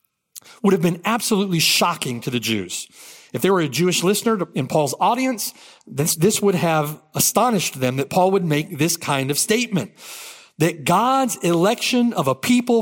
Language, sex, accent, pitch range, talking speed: English, male, American, 160-235 Hz, 175 wpm